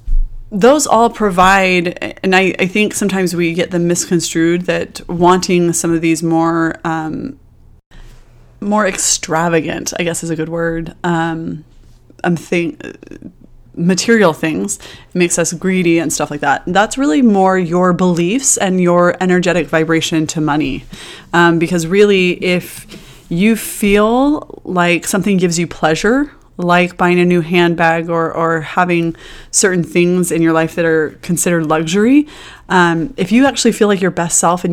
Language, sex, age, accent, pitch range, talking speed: English, female, 20-39, American, 165-195 Hz, 150 wpm